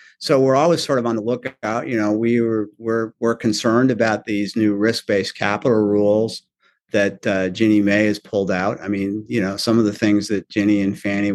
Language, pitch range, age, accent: English, 105-125 Hz, 50-69, American